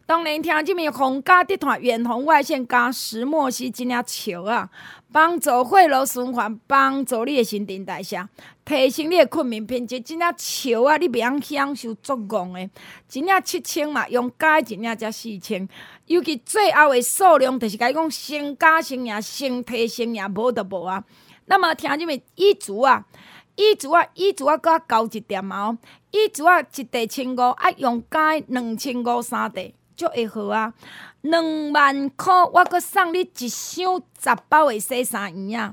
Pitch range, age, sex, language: 230-320 Hz, 20-39, female, Chinese